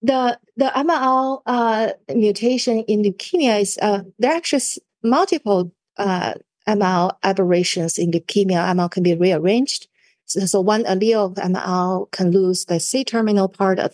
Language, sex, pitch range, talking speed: English, female, 180-220 Hz, 155 wpm